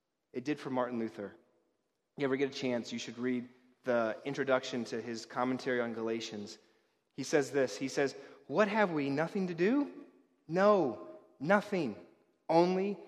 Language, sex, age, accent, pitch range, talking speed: English, male, 30-49, American, 130-180 Hz, 155 wpm